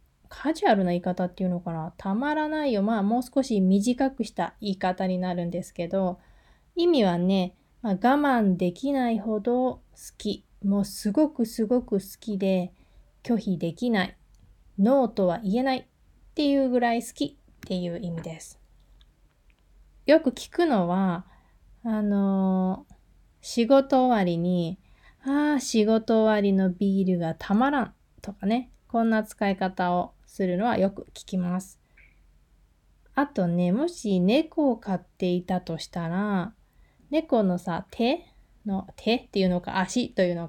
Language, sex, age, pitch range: Japanese, female, 20-39, 180-245 Hz